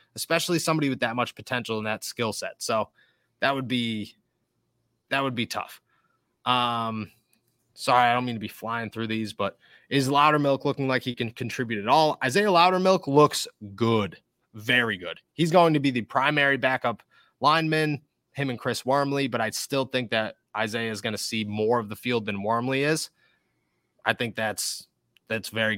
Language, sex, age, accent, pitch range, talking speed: English, male, 20-39, American, 115-150 Hz, 180 wpm